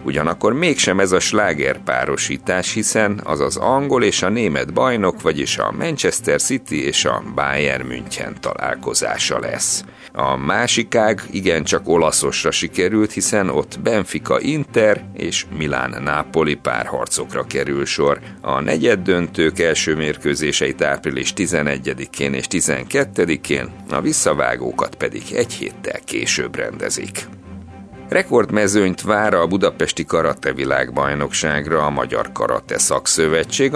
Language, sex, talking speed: Hungarian, male, 115 wpm